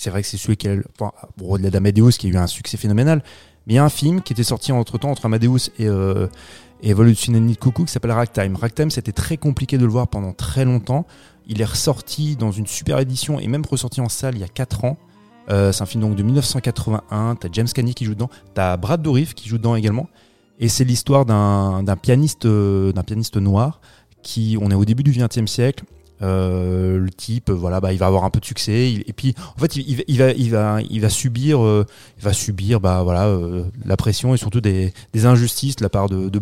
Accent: French